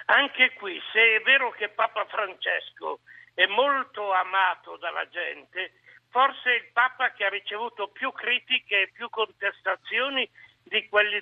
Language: Italian